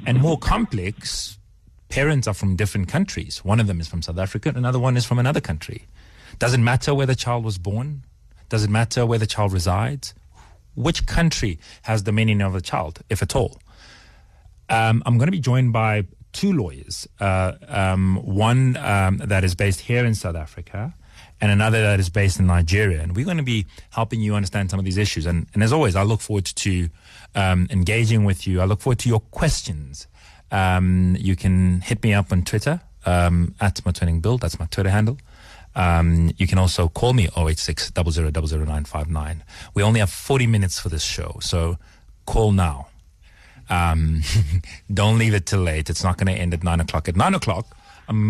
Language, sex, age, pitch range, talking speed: English, male, 30-49, 85-110 Hz, 195 wpm